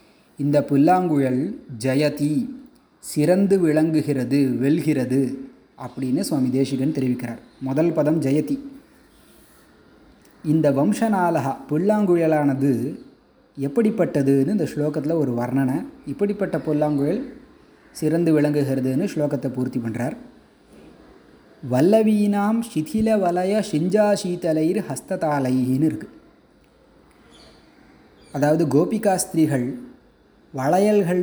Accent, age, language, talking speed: native, 30-49, Tamil, 75 wpm